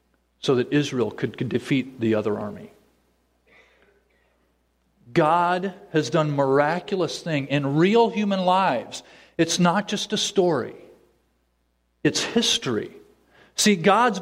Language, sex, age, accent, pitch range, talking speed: English, male, 40-59, American, 135-195 Hz, 110 wpm